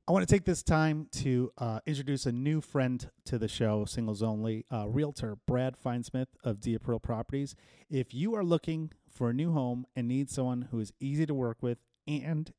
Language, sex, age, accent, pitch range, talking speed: English, male, 30-49, American, 110-135 Hz, 200 wpm